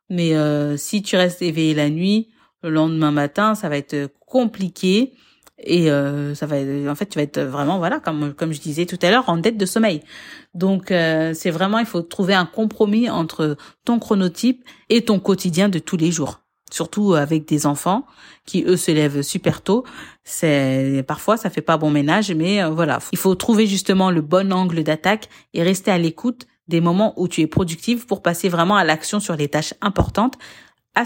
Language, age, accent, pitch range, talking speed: French, 40-59, French, 155-205 Hz, 200 wpm